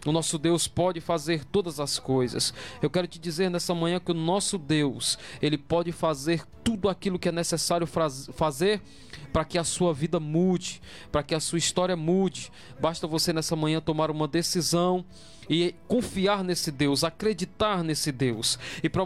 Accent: Brazilian